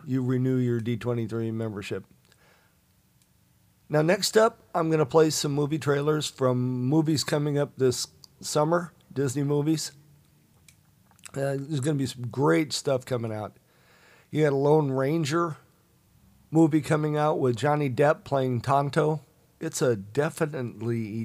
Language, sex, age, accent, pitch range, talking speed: English, male, 50-69, American, 115-145 Hz, 140 wpm